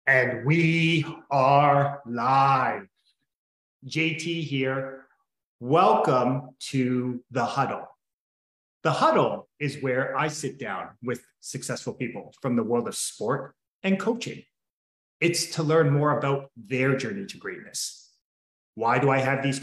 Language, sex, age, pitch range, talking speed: English, male, 30-49, 120-145 Hz, 125 wpm